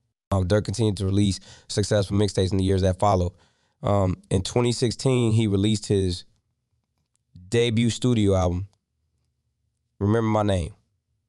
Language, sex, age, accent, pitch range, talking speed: English, male, 20-39, American, 95-110 Hz, 130 wpm